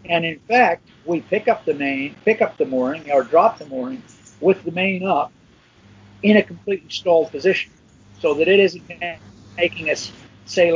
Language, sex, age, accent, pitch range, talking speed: English, male, 50-69, American, 145-190 Hz, 180 wpm